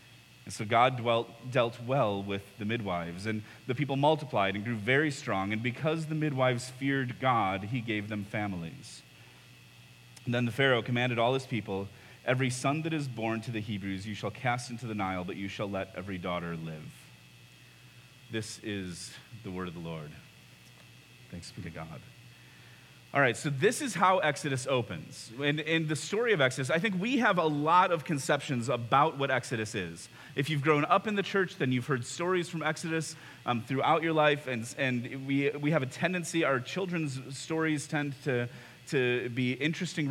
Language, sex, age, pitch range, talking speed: English, male, 30-49, 110-140 Hz, 190 wpm